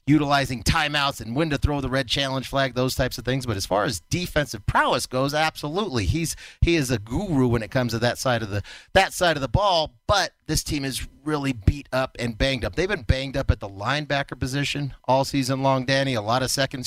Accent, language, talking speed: American, English, 235 wpm